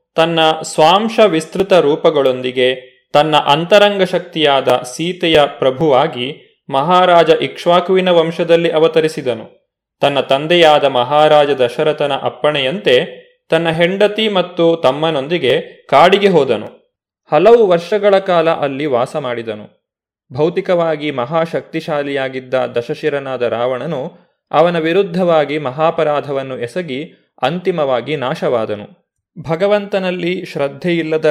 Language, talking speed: Kannada, 80 wpm